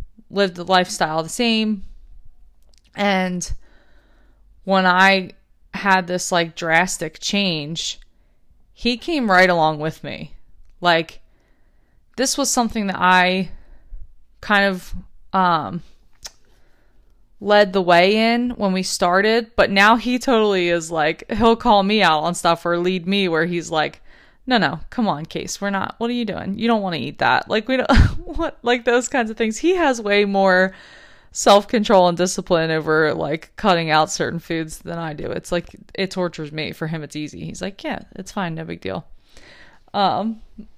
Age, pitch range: 20-39, 165-205 Hz